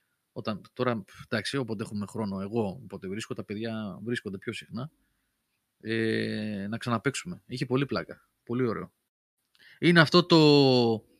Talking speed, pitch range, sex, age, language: 135 wpm, 105-135 Hz, male, 30-49, Greek